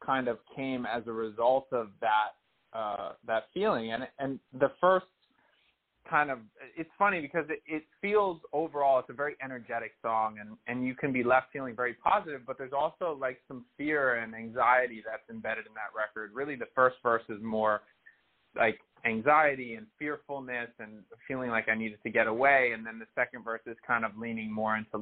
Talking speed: 190 wpm